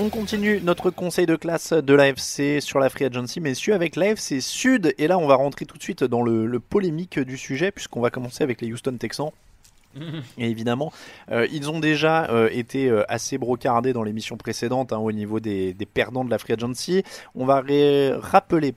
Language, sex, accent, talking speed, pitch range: French, male, French, 205 wpm, 115-160 Hz